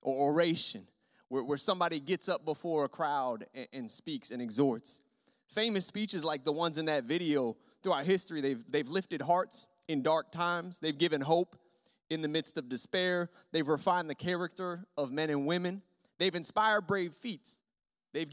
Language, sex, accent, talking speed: English, male, American, 175 wpm